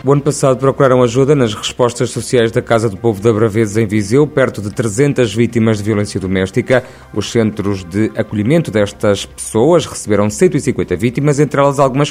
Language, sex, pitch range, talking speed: Portuguese, male, 110-130 Hz, 175 wpm